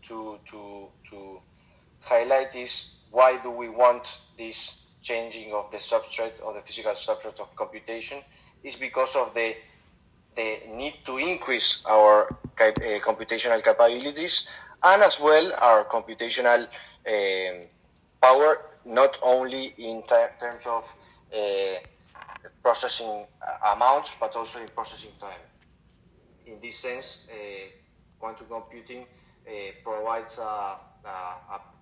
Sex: male